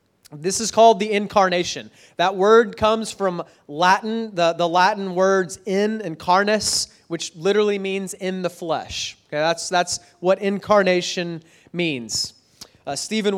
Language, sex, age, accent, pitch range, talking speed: English, male, 30-49, American, 160-195 Hz, 135 wpm